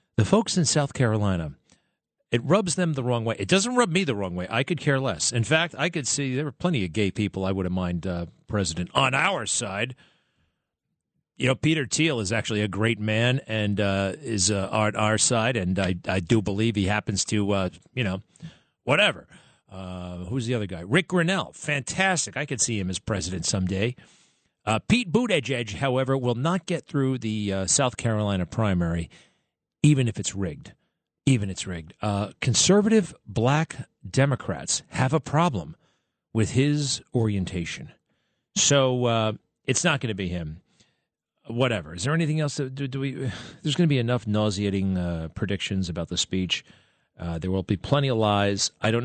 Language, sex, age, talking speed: English, male, 40-59, 185 wpm